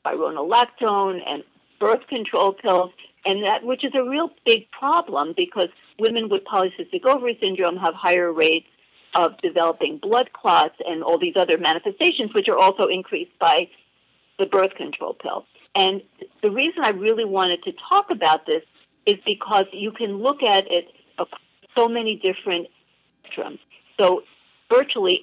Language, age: English, 50-69